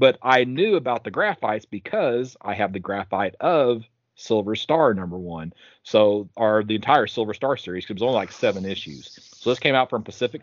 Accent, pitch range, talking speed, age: American, 100-125 Hz, 200 wpm, 30-49